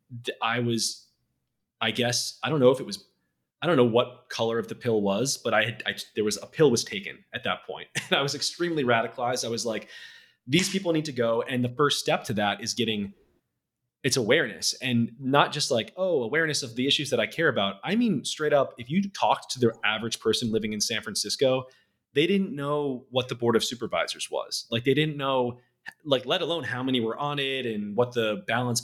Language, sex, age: English, male, 20-39